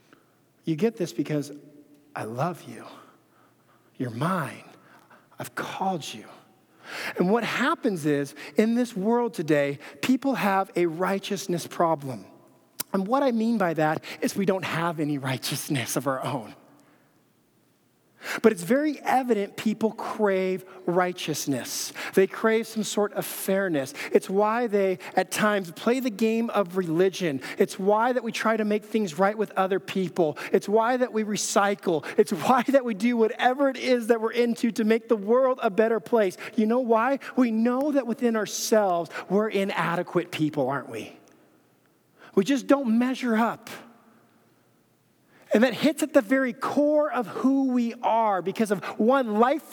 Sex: male